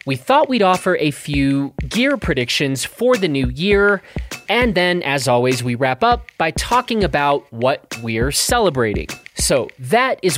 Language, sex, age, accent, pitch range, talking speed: English, male, 30-49, American, 110-150 Hz, 160 wpm